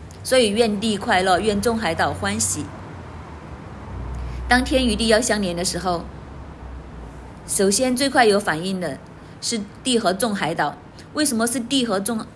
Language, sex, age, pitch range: Chinese, female, 30-49, 175-225 Hz